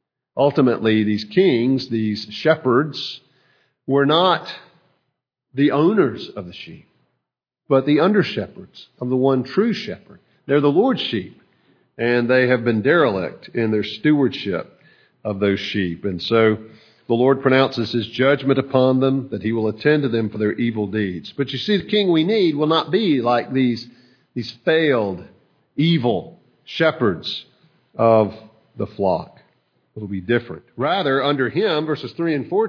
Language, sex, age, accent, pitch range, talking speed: English, male, 50-69, American, 110-145 Hz, 155 wpm